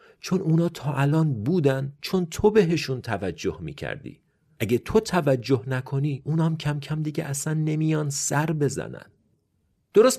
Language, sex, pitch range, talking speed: Persian, male, 100-155 Hz, 135 wpm